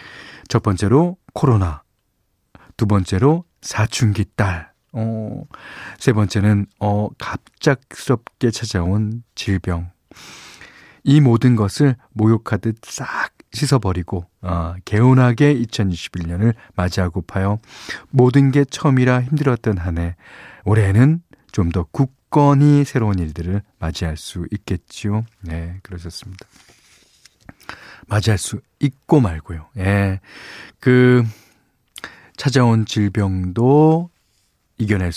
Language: Korean